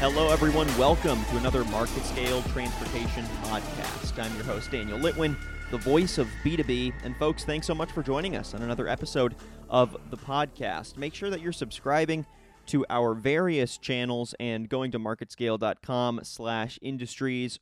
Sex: male